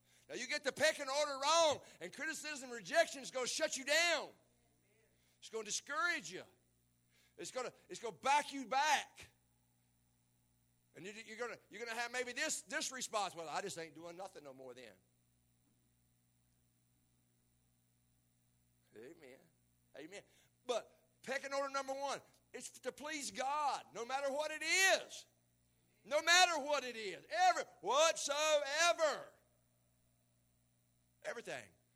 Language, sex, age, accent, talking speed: English, male, 60-79, American, 145 wpm